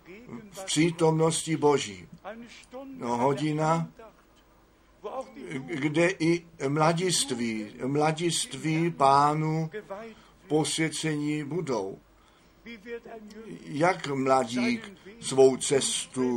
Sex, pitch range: male, 140-190 Hz